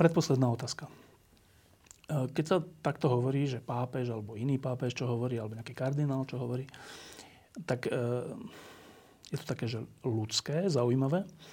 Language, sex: Slovak, male